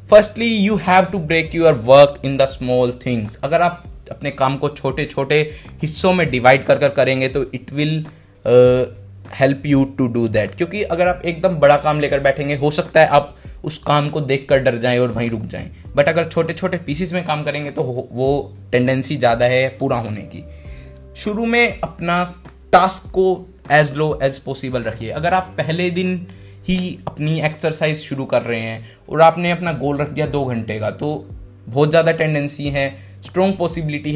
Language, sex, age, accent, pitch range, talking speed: Hindi, male, 20-39, native, 120-155 Hz, 190 wpm